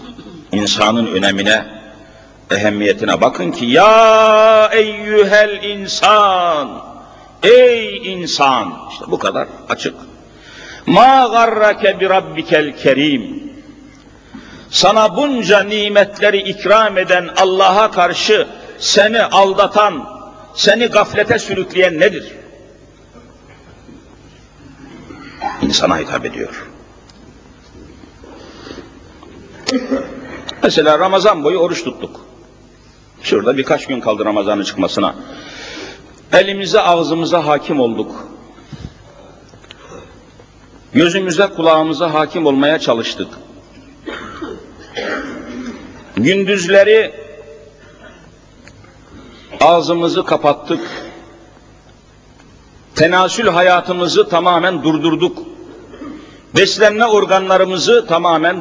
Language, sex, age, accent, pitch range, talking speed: Turkish, male, 50-69, native, 170-220 Hz, 65 wpm